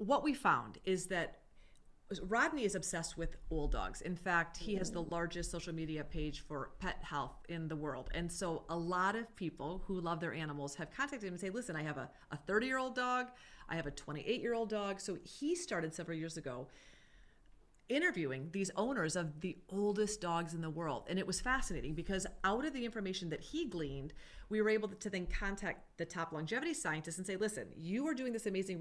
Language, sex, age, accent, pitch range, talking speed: English, female, 30-49, American, 165-205 Hz, 205 wpm